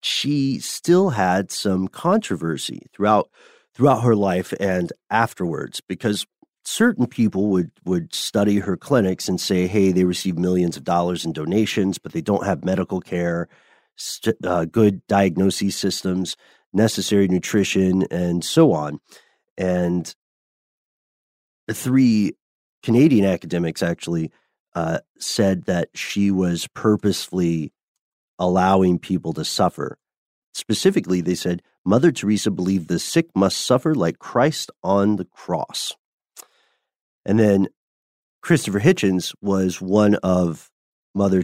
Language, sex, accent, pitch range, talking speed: English, male, American, 85-100 Hz, 120 wpm